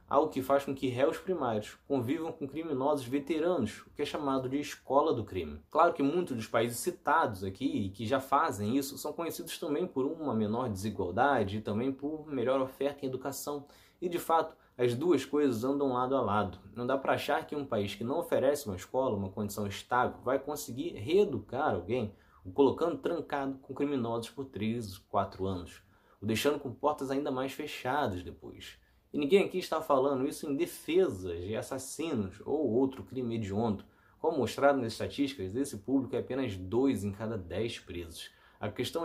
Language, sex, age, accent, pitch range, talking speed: Portuguese, male, 20-39, Brazilian, 110-150 Hz, 185 wpm